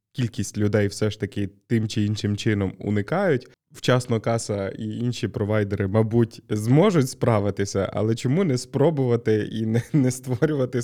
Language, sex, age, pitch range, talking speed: Ukrainian, male, 20-39, 105-125 Hz, 145 wpm